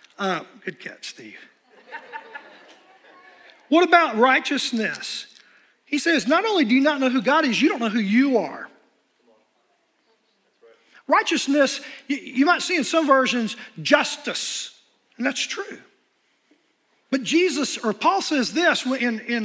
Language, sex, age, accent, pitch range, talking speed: English, male, 40-59, American, 240-315 Hz, 135 wpm